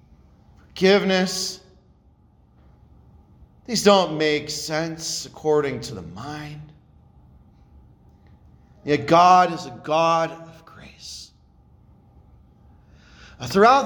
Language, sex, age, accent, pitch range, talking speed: English, male, 40-59, American, 150-250 Hz, 75 wpm